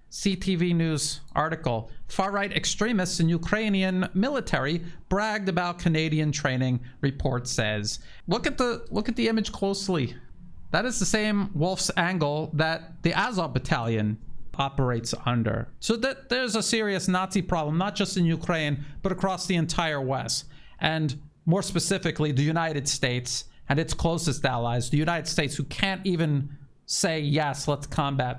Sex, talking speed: male, 150 wpm